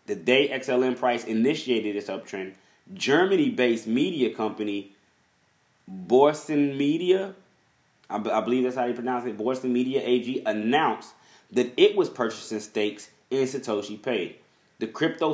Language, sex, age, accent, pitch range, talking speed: English, male, 20-39, American, 105-135 Hz, 135 wpm